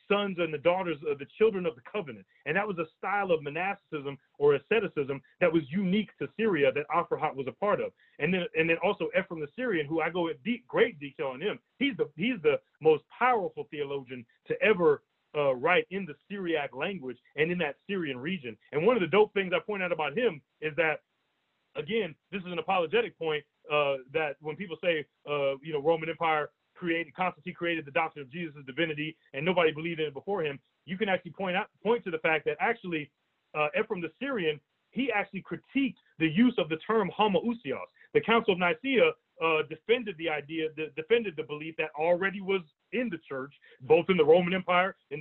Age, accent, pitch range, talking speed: 30-49, American, 155-215 Hz, 210 wpm